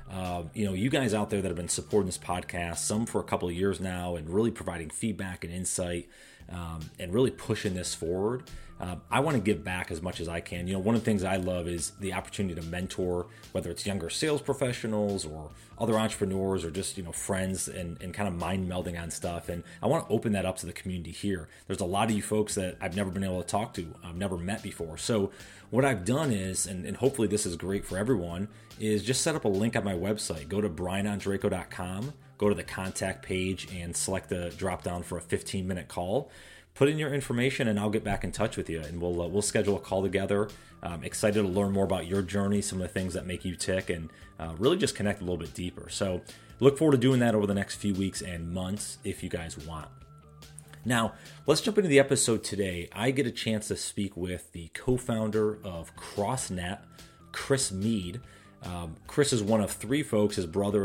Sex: male